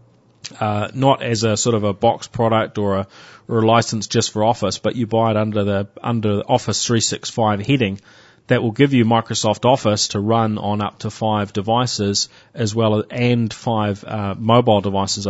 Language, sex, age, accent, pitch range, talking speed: English, male, 30-49, Australian, 100-115 Hz, 190 wpm